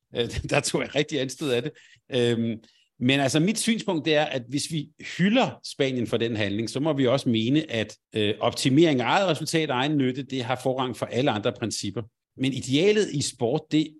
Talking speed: 195 wpm